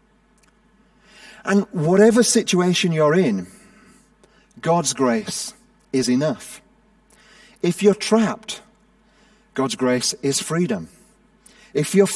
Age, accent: 40-59, British